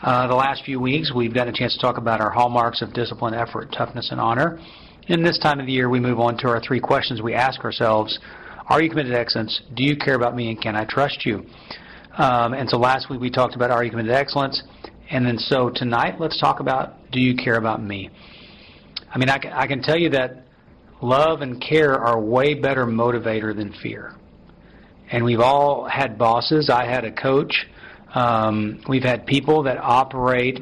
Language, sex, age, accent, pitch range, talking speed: English, male, 40-59, American, 115-135 Hz, 215 wpm